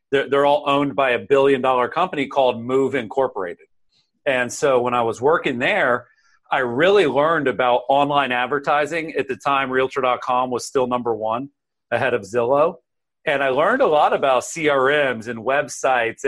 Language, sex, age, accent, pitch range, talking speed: English, male, 40-59, American, 125-145 Hz, 160 wpm